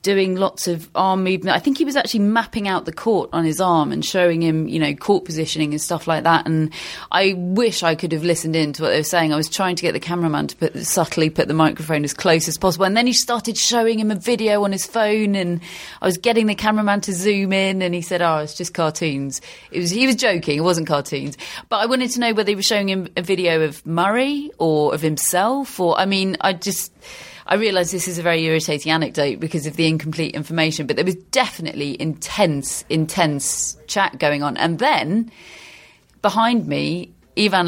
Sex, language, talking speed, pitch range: female, English, 225 wpm, 160-195 Hz